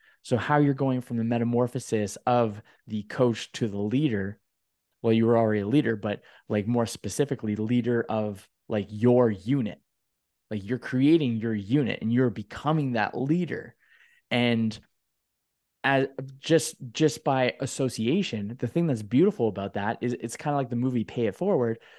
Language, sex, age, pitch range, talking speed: English, male, 20-39, 110-135 Hz, 165 wpm